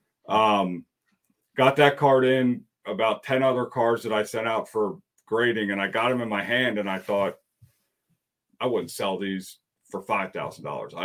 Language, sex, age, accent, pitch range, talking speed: English, male, 40-59, American, 100-125 Hz, 170 wpm